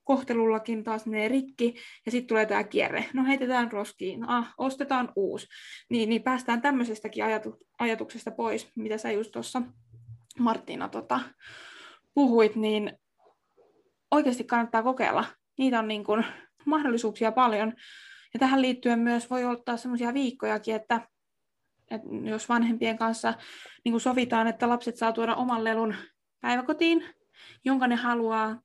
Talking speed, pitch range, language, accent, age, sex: 130 wpm, 220-250 Hz, Finnish, native, 20-39, female